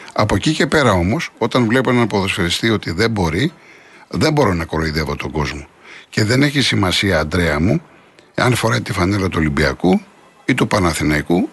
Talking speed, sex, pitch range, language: 170 wpm, male, 100-140 Hz, Greek